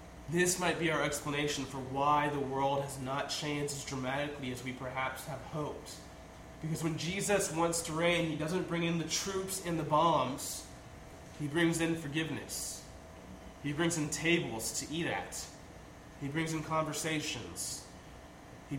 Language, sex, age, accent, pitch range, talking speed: English, male, 20-39, American, 130-165 Hz, 160 wpm